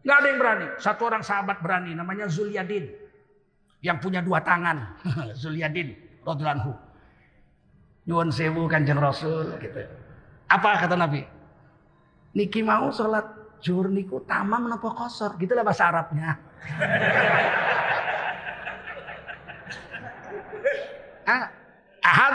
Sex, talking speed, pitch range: male, 85 wpm, 155-215 Hz